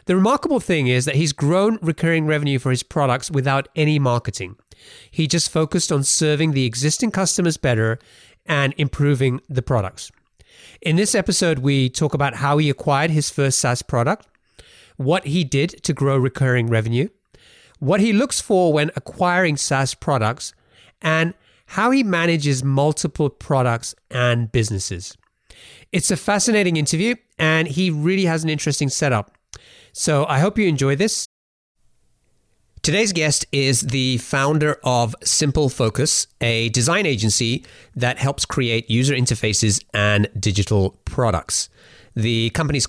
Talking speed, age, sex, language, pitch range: 145 wpm, 30-49, male, English, 120-160 Hz